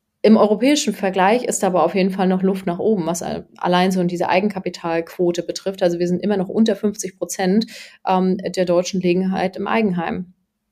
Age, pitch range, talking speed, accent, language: 30-49, 180-205 Hz, 180 wpm, German, German